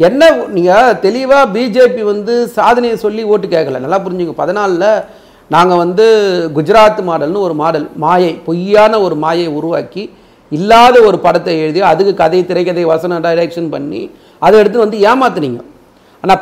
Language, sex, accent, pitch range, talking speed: Tamil, male, native, 165-230 Hz, 140 wpm